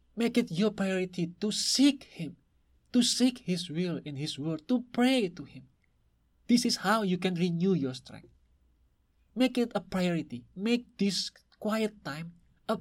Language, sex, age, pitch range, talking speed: English, male, 20-39, 145-205 Hz, 165 wpm